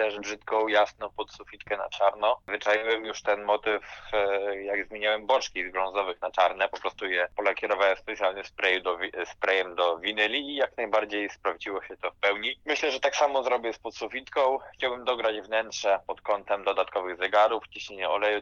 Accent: native